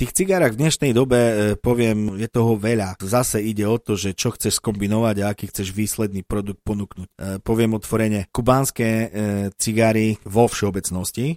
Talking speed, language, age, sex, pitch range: 175 wpm, Slovak, 30-49, male, 95-110 Hz